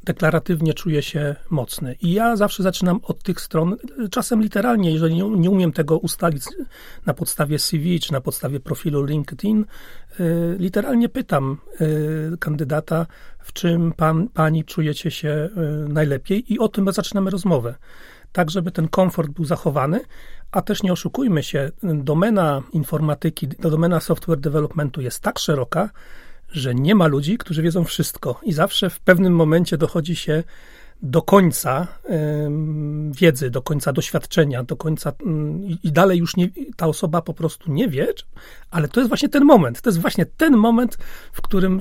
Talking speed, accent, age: 155 wpm, native, 40-59